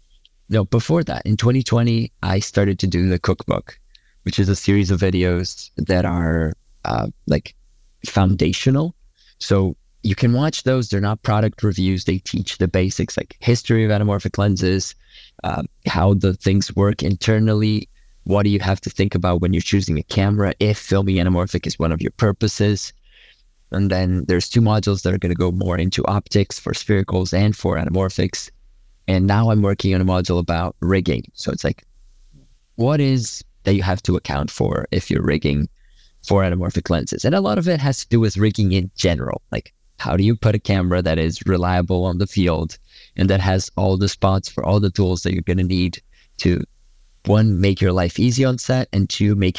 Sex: male